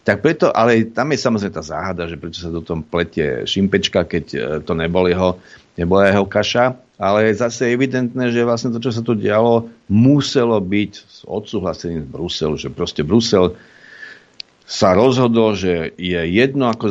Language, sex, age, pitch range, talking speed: Slovak, male, 50-69, 95-125 Hz, 165 wpm